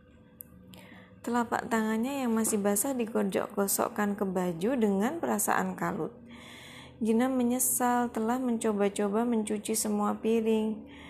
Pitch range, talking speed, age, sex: 190-235 Hz, 95 wpm, 20-39, female